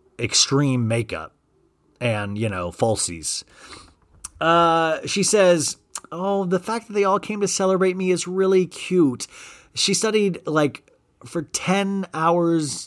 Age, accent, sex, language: 30-49, American, male, English